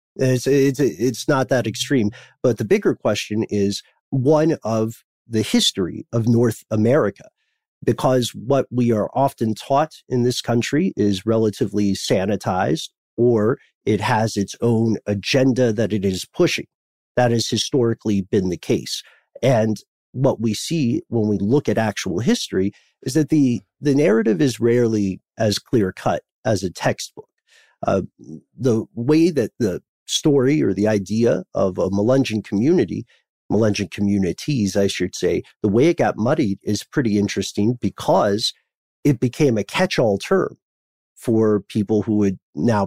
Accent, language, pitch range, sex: American, English, 100-125 Hz, male